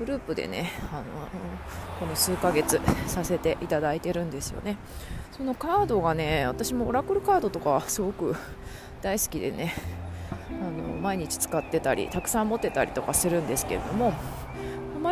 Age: 20-39